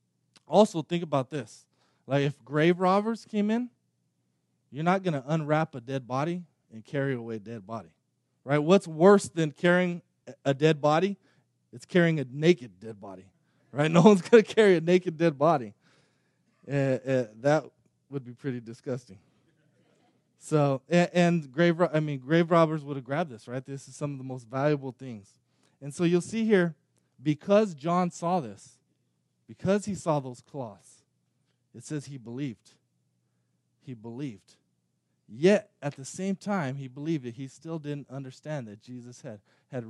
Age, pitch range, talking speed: 20-39, 120-165 Hz, 165 wpm